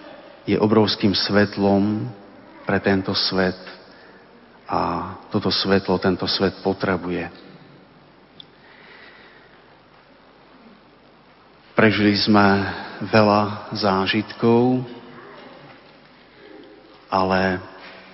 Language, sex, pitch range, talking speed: Slovak, male, 95-115 Hz, 55 wpm